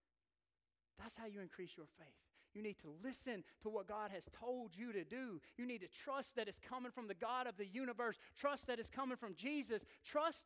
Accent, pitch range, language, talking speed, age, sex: American, 175-265 Hz, English, 220 wpm, 40-59, male